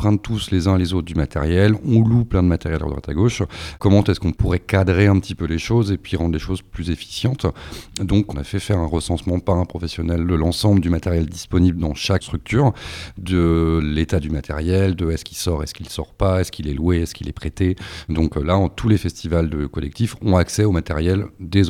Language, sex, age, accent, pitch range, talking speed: French, male, 40-59, French, 80-100 Hz, 230 wpm